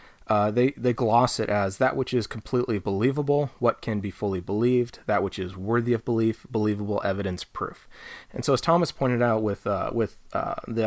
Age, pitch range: 30-49, 105-120 Hz